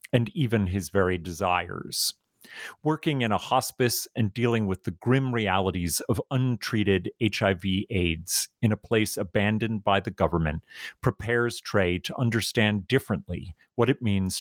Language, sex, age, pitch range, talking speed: English, male, 40-59, 95-120 Hz, 140 wpm